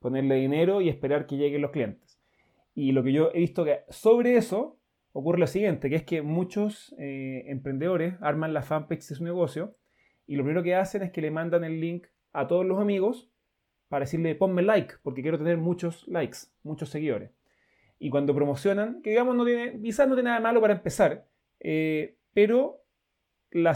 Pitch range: 145-190 Hz